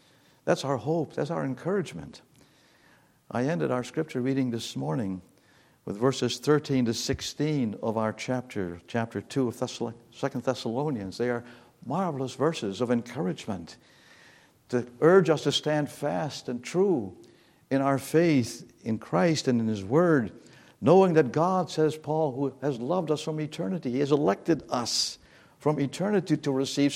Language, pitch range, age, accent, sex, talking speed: English, 115-155 Hz, 60-79, American, male, 150 wpm